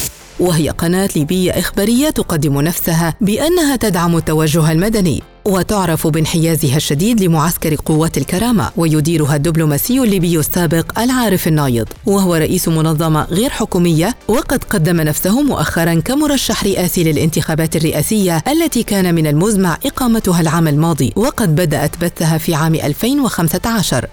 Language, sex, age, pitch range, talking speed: Arabic, female, 50-69, 155-195 Hz, 120 wpm